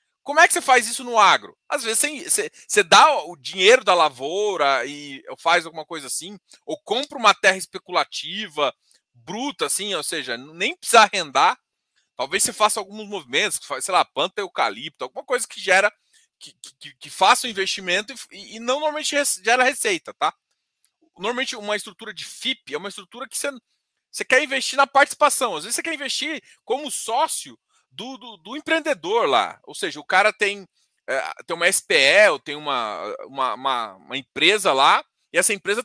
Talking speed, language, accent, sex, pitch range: 180 wpm, Portuguese, Brazilian, male, 190-275 Hz